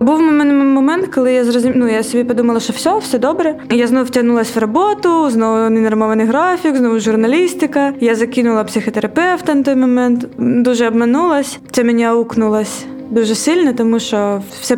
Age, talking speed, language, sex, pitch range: 20-39, 160 wpm, Ukrainian, female, 215-245 Hz